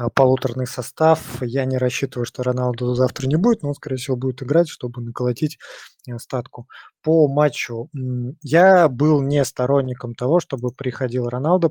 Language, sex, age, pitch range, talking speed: Russian, male, 20-39, 125-145 Hz, 150 wpm